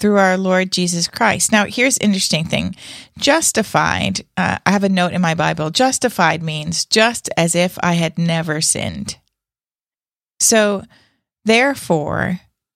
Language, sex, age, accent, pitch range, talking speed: English, female, 40-59, American, 175-225 Hz, 140 wpm